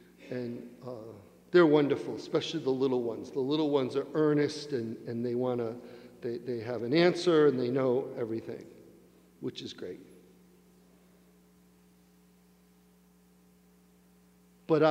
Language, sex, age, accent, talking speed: English, male, 50-69, American, 120 wpm